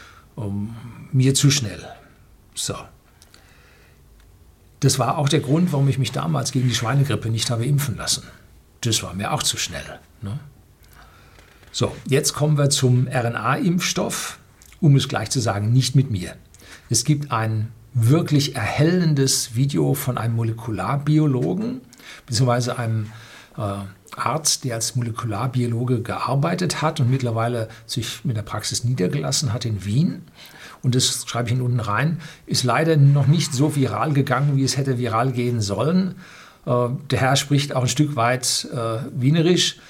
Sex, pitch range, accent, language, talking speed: male, 115-145 Hz, German, German, 150 wpm